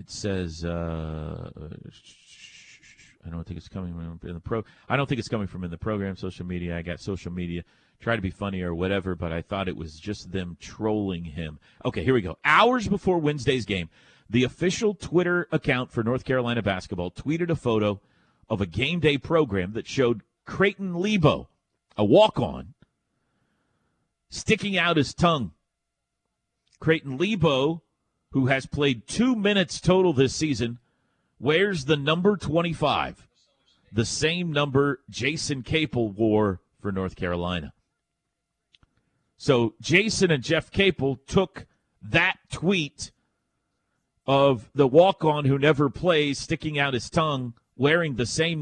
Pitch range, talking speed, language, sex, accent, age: 100-155 Hz, 145 wpm, English, male, American, 40-59